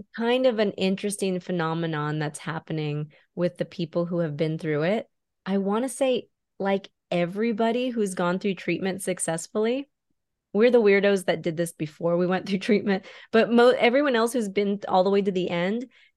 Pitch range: 170-205 Hz